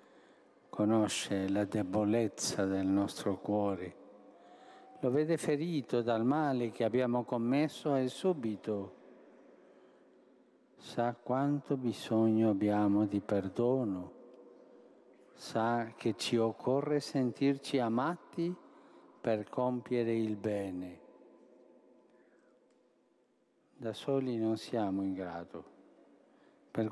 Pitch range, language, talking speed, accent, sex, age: 105-135 Hz, Italian, 85 wpm, native, male, 50-69